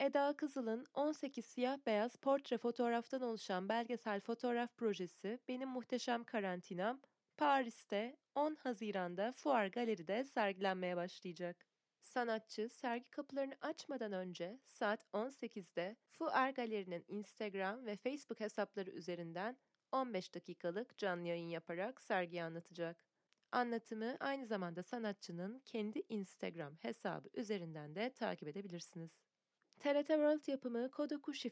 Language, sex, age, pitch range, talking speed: Turkish, female, 30-49, 190-260 Hz, 105 wpm